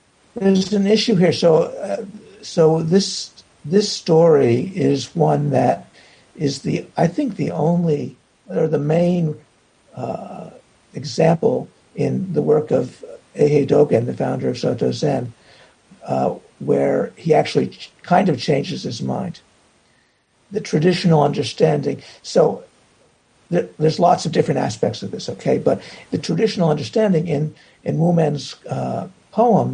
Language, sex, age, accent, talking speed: English, male, 60-79, American, 135 wpm